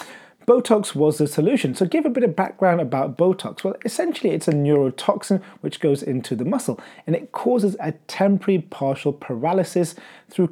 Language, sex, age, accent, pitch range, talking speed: English, male, 30-49, British, 140-195 Hz, 170 wpm